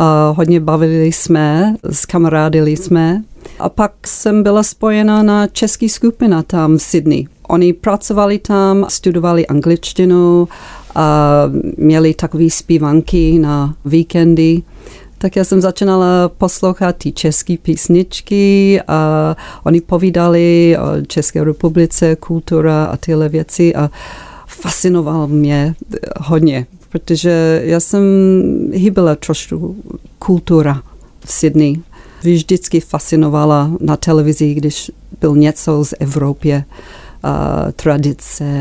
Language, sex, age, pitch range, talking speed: Czech, female, 40-59, 155-185 Hz, 105 wpm